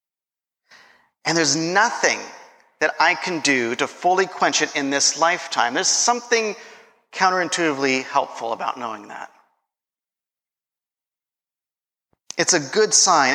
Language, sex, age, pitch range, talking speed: English, male, 40-59, 150-200 Hz, 110 wpm